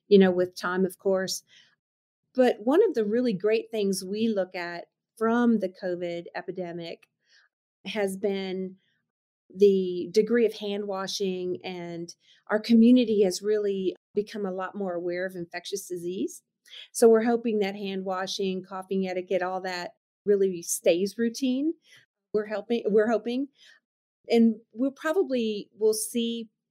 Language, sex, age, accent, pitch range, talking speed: English, female, 40-59, American, 185-220 Hz, 135 wpm